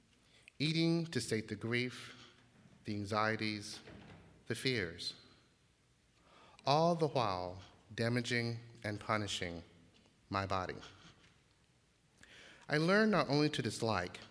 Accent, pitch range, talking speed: American, 105-135 Hz, 95 wpm